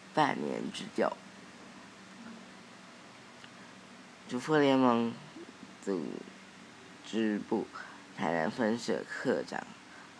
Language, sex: Chinese, female